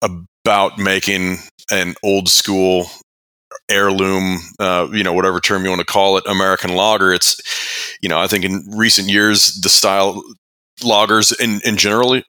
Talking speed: 155 wpm